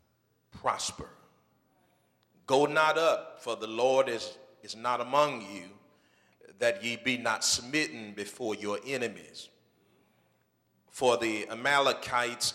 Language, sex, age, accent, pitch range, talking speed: English, male, 40-59, American, 110-135 Hz, 110 wpm